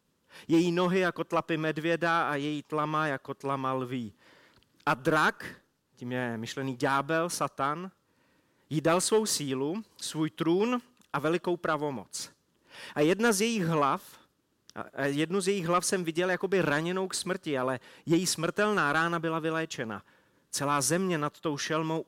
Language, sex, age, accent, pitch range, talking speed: Czech, male, 30-49, native, 145-180 Hz, 145 wpm